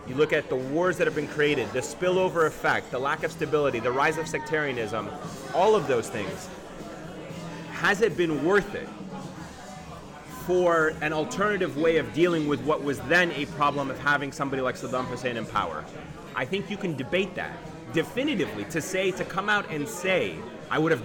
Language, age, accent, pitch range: English, 30-49, American, 145-180 Hz